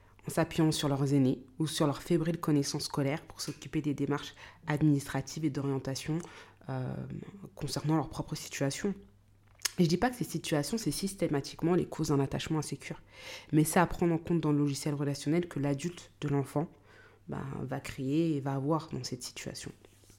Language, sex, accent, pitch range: French, female, French, 135-165 Hz